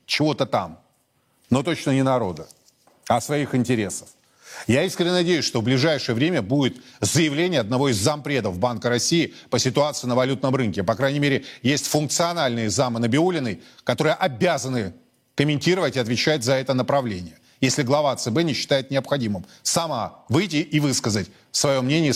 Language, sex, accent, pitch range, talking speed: Russian, male, native, 120-150 Hz, 150 wpm